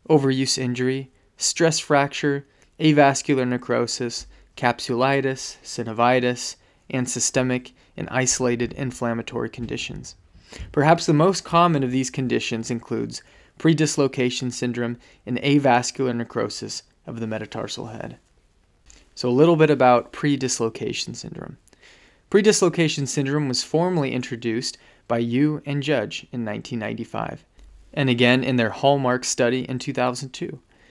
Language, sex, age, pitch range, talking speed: English, male, 20-39, 120-145 Hz, 110 wpm